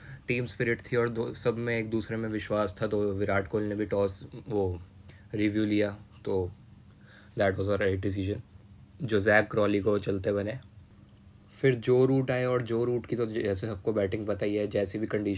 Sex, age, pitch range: male, 20-39, 105-115 Hz